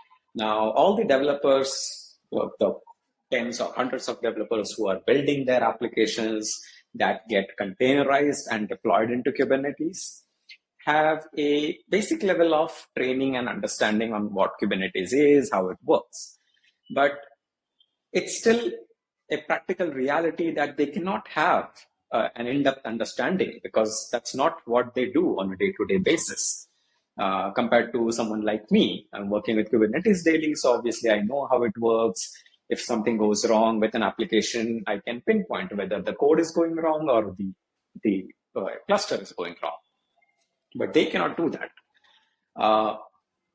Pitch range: 110-160 Hz